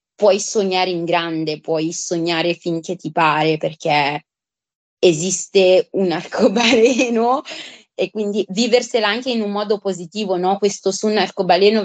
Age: 20-39